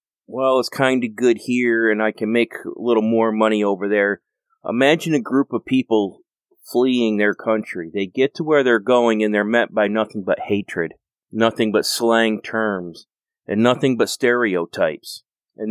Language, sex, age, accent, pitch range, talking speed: English, male, 30-49, American, 110-130 Hz, 175 wpm